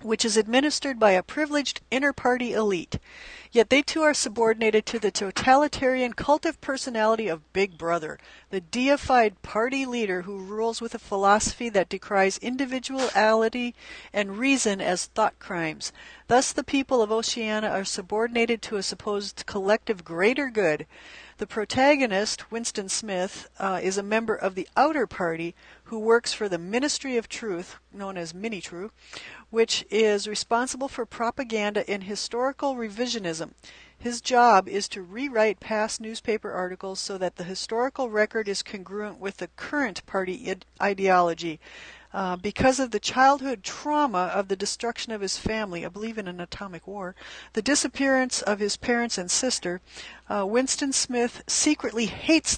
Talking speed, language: 155 wpm, English